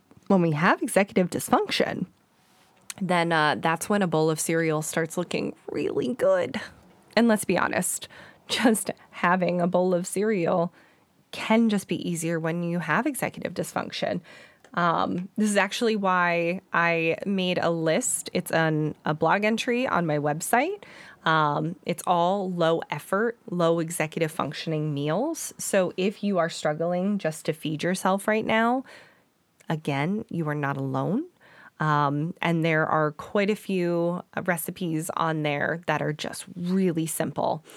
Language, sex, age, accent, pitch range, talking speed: English, female, 20-39, American, 160-200 Hz, 145 wpm